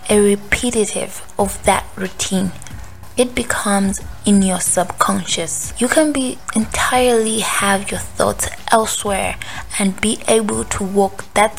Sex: female